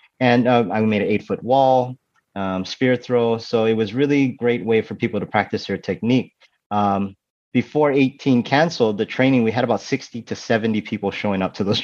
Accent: American